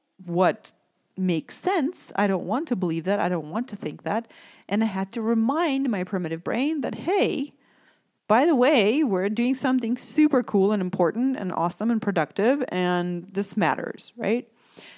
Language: English